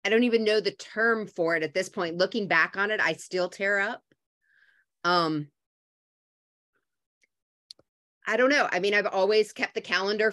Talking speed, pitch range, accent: 175 wpm, 180-225 Hz, American